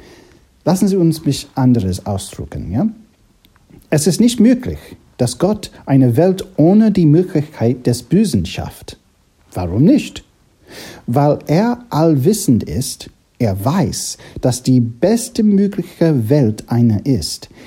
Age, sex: 60-79, male